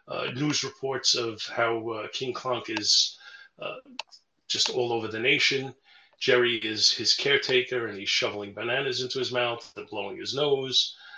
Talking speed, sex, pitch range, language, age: 160 wpm, male, 115-150 Hz, English, 40-59